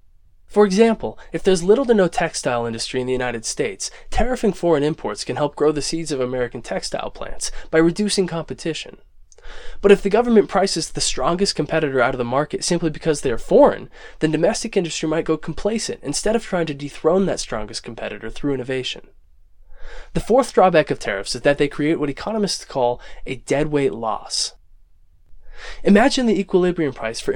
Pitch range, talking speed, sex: 135-195 Hz, 180 wpm, male